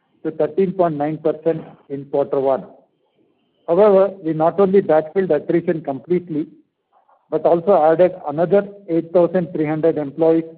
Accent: Indian